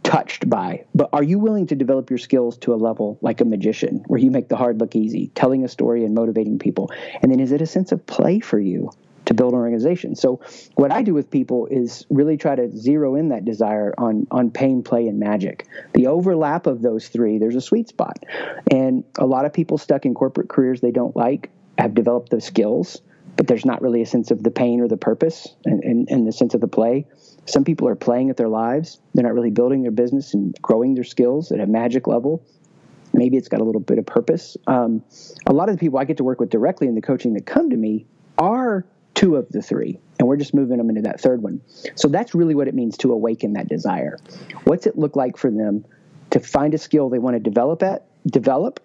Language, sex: English, male